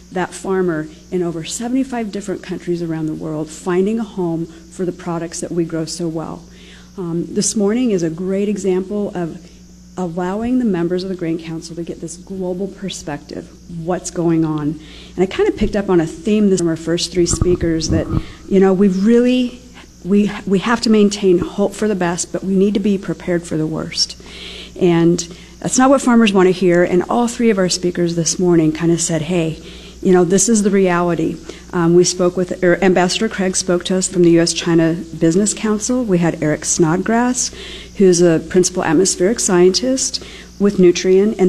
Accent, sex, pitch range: American, female, 170-195 Hz